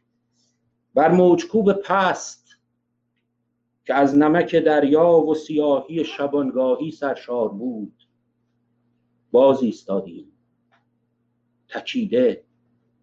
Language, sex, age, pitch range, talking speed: Persian, male, 50-69, 120-155 Hz, 70 wpm